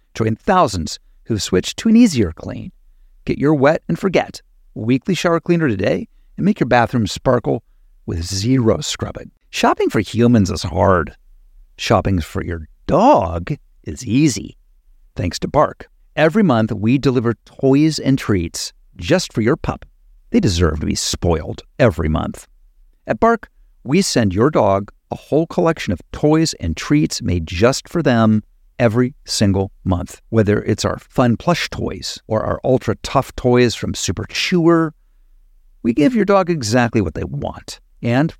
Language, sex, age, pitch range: English, male, 50-69, 100-155 Hz